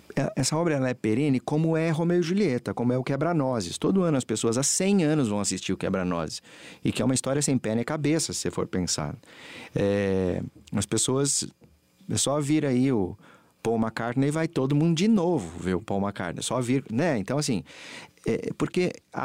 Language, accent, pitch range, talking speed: English, Brazilian, 105-140 Hz, 210 wpm